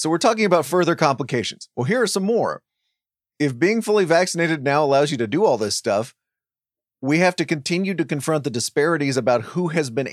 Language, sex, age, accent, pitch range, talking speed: English, male, 30-49, American, 120-160 Hz, 205 wpm